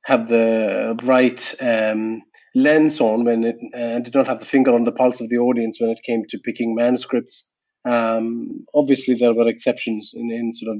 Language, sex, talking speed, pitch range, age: English, male, 195 wpm, 110-130 Hz, 30-49